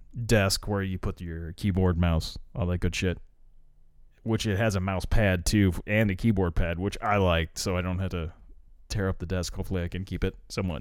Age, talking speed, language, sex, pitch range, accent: 30-49, 220 wpm, English, male, 90-115 Hz, American